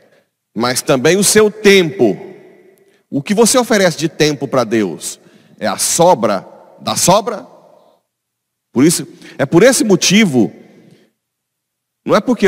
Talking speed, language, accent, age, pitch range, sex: 120 wpm, Portuguese, Brazilian, 40-59, 145-215 Hz, male